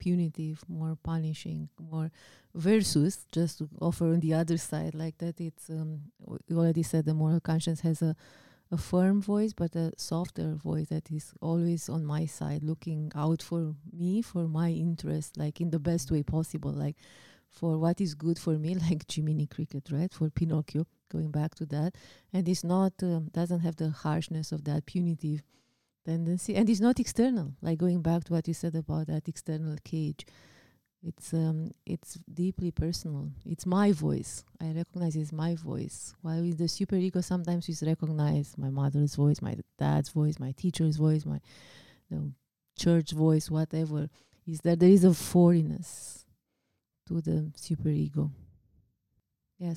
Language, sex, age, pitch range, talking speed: English, female, 30-49, 155-170 Hz, 170 wpm